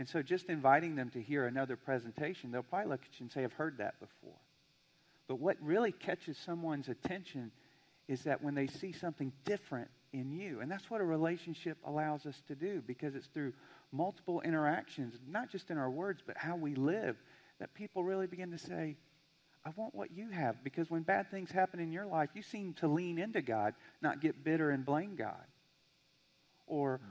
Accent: American